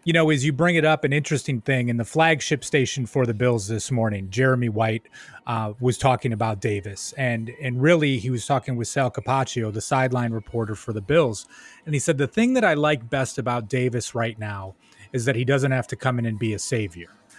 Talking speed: 230 wpm